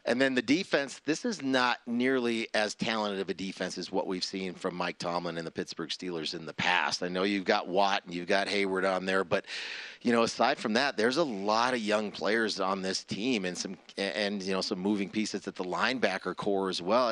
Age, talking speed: 40-59, 235 wpm